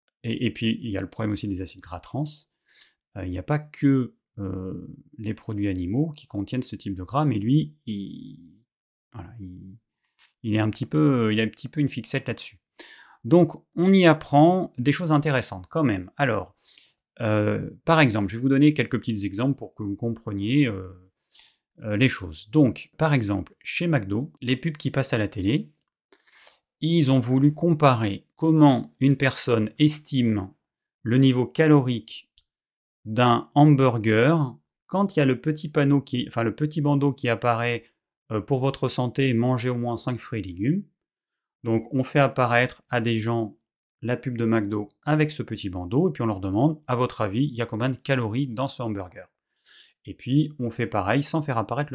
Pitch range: 110-145 Hz